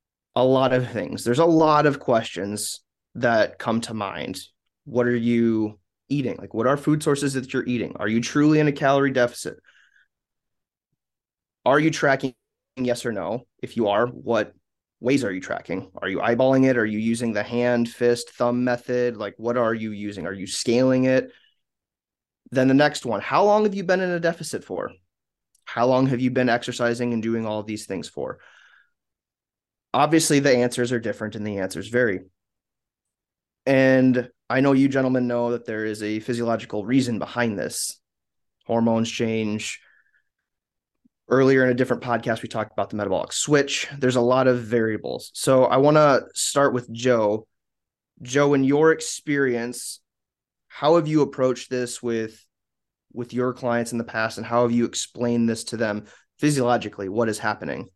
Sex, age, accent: male, 30-49, American